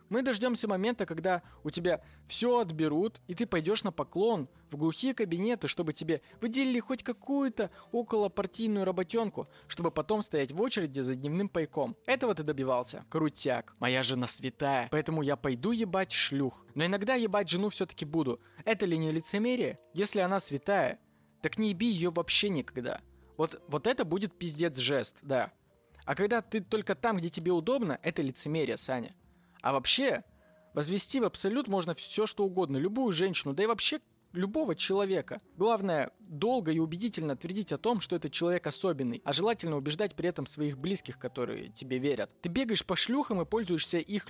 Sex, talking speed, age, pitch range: male, 170 wpm, 20-39, 155-225 Hz